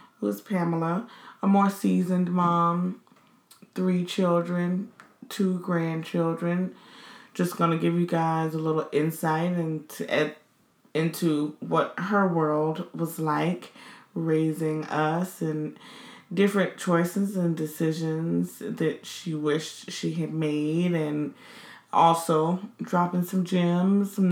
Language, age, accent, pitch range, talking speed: English, 20-39, American, 155-180 Hz, 110 wpm